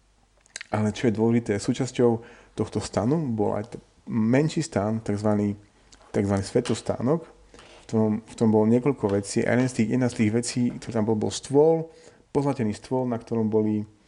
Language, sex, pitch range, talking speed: Slovak, male, 105-125 Hz, 150 wpm